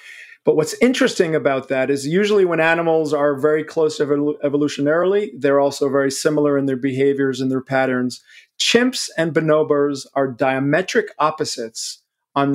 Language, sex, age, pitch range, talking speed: English, male, 40-59, 135-165 Hz, 145 wpm